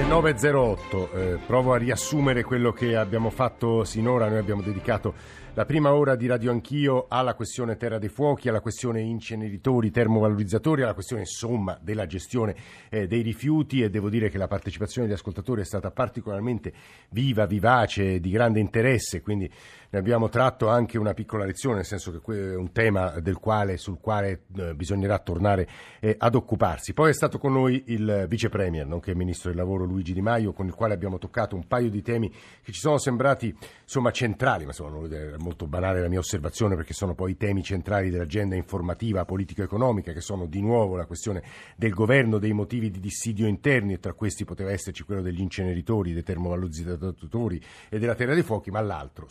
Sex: male